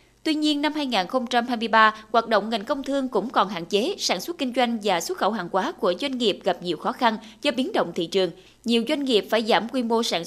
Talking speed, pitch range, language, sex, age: 245 wpm, 195-275 Hz, Vietnamese, female, 20-39